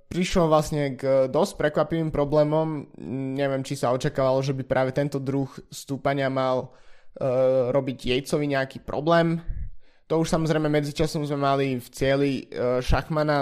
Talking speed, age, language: 135 wpm, 20-39, Slovak